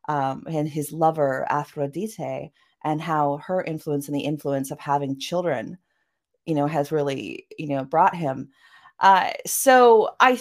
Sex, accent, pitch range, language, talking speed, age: female, American, 150-190 Hz, English, 150 wpm, 30-49